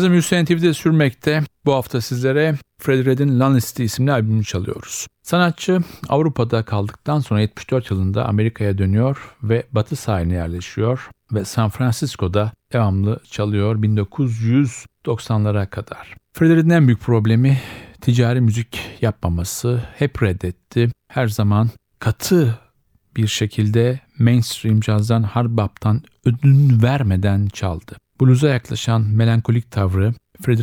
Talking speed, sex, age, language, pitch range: 110 wpm, male, 50-69, Turkish, 105-125 Hz